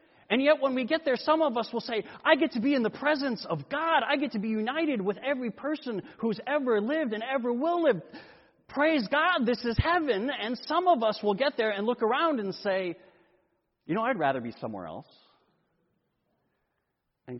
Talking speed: 205 wpm